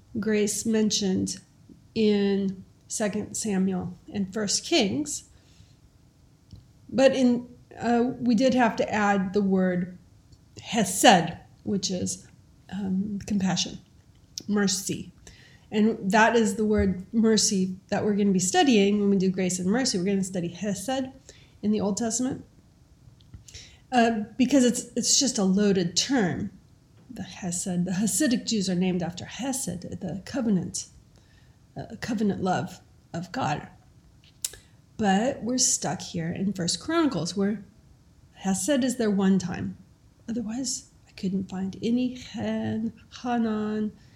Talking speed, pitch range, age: 130 wpm, 190-235 Hz, 40-59